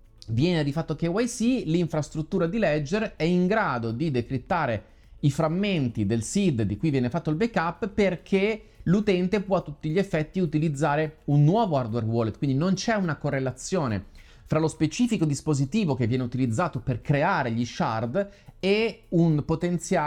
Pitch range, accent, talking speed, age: 125-180 Hz, native, 160 wpm, 30-49